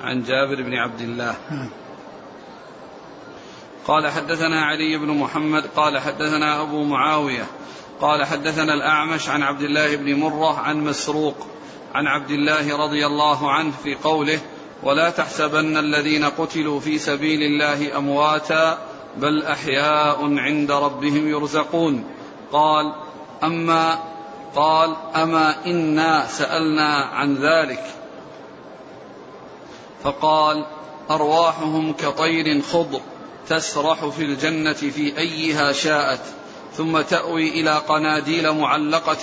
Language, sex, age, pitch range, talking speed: Arabic, male, 40-59, 150-160 Hz, 100 wpm